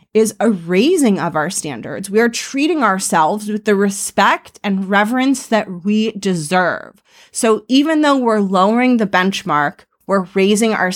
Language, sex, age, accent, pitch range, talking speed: English, female, 30-49, American, 190-235 Hz, 155 wpm